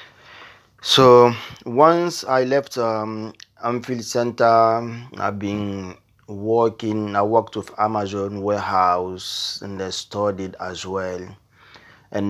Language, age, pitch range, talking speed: English, 30-49, 95-110 Hz, 100 wpm